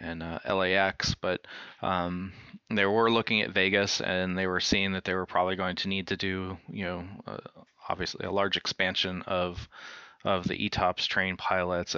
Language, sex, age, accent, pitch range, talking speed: English, male, 30-49, American, 90-100 Hz, 180 wpm